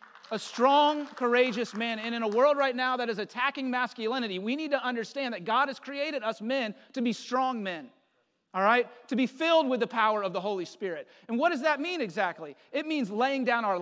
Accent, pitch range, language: American, 205-260 Hz, English